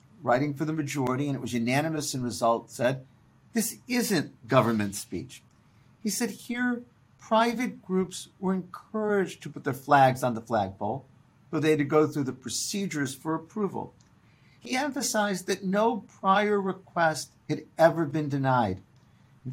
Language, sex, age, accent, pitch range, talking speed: English, male, 50-69, American, 130-190 Hz, 155 wpm